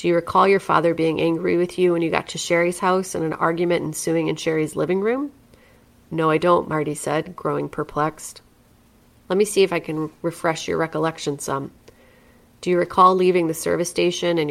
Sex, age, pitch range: female, 30-49, 155-175 Hz